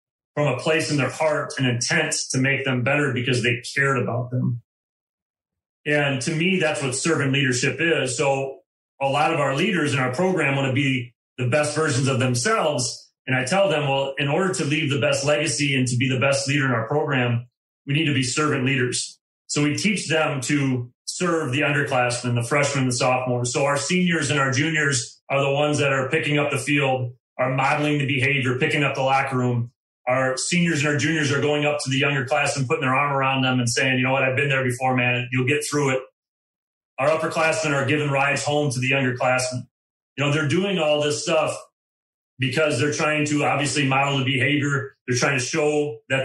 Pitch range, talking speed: 130-150 Hz, 215 wpm